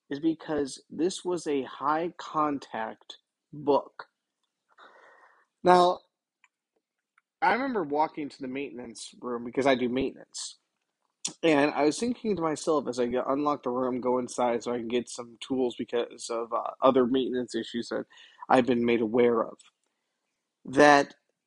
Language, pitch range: English, 125-160 Hz